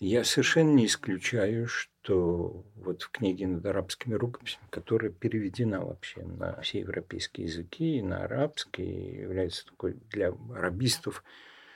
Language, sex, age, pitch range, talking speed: Russian, male, 50-69, 90-130 Hz, 130 wpm